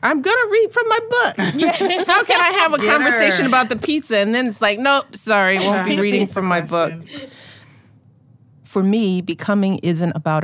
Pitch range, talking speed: 130-165 Hz, 190 wpm